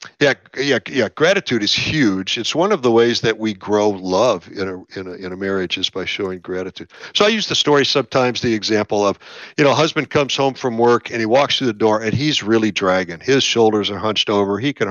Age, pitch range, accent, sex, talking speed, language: 50-69, 100-125 Hz, American, male, 240 wpm, English